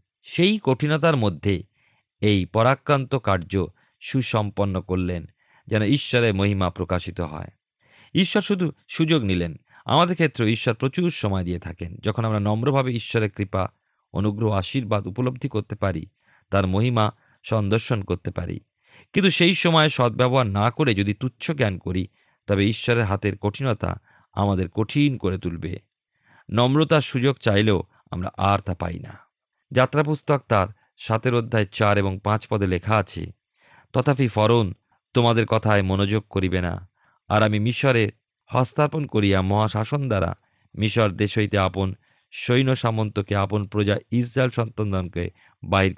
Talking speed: 130 wpm